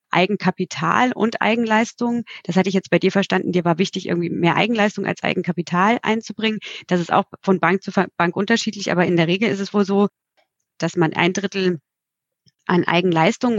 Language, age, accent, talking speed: German, 30-49, German, 180 wpm